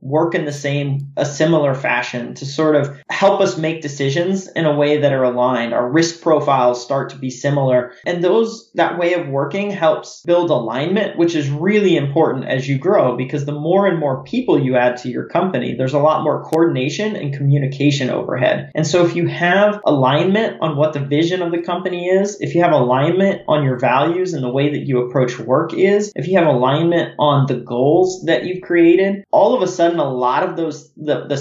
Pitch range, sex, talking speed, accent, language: 140-175 Hz, male, 210 wpm, American, English